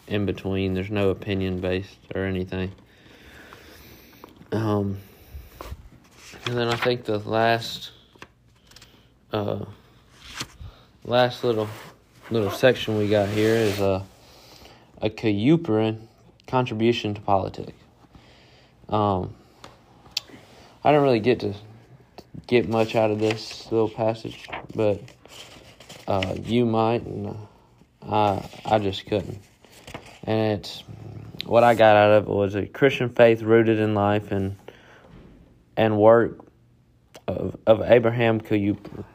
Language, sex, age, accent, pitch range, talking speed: English, male, 20-39, American, 100-115 Hz, 115 wpm